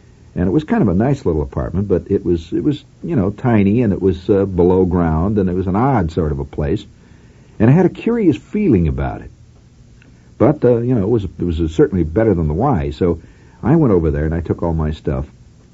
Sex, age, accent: male, 60-79, American